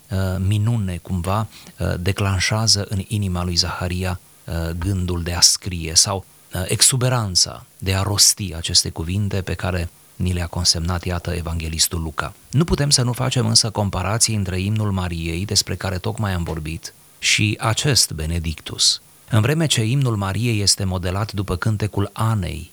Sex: male